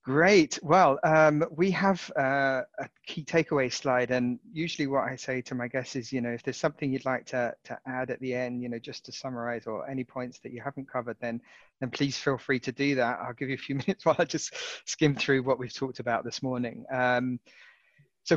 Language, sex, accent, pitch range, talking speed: English, male, British, 125-145 Hz, 230 wpm